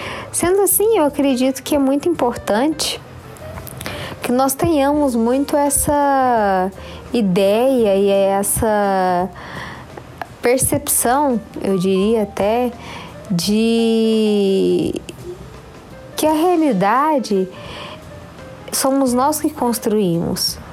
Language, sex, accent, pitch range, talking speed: Portuguese, female, Brazilian, 195-280 Hz, 80 wpm